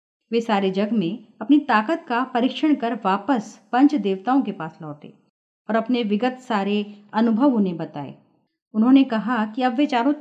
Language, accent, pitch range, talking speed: Hindi, native, 210-285 Hz, 165 wpm